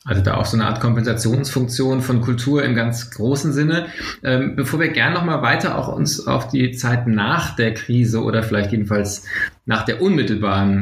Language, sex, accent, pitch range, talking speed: German, male, German, 110-135 Hz, 180 wpm